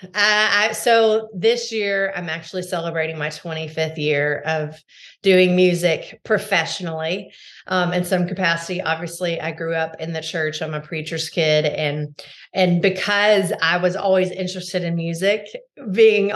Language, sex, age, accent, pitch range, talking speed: English, female, 30-49, American, 160-190 Hz, 145 wpm